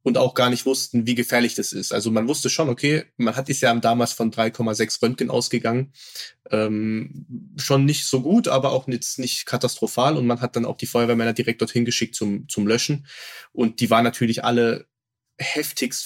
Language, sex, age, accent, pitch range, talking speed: German, male, 20-39, German, 115-130 Hz, 195 wpm